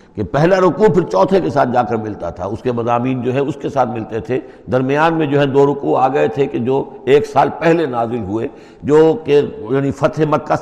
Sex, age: male, 60-79